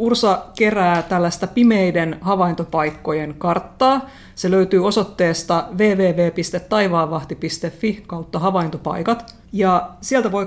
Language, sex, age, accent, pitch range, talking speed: Finnish, female, 30-49, native, 170-205 Hz, 85 wpm